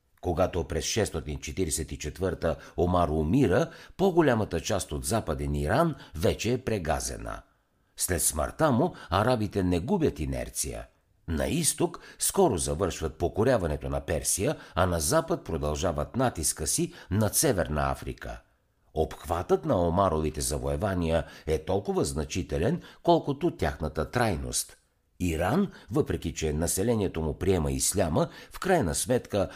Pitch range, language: 75-100 Hz, Bulgarian